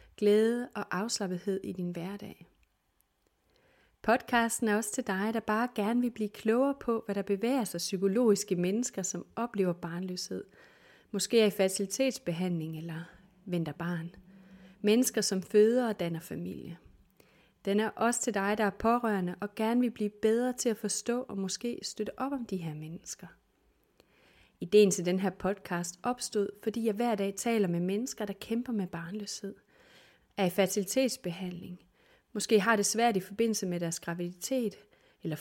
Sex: female